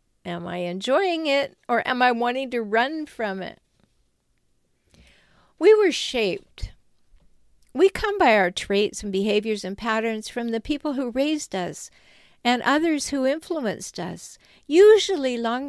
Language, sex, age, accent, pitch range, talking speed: English, female, 50-69, American, 200-295 Hz, 140 wpm